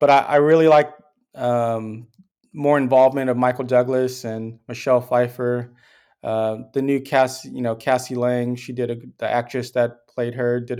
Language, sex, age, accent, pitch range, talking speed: English, male, 20-39, American, 120-140 Hz, 170 wpm